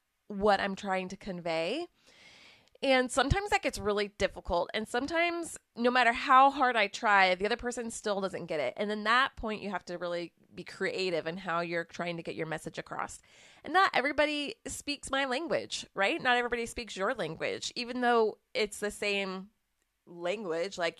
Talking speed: 185 wpm